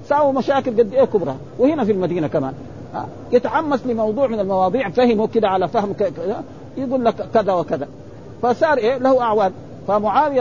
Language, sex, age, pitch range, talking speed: Arabic, male, 50-69, 165-235 Hz, 135 wpm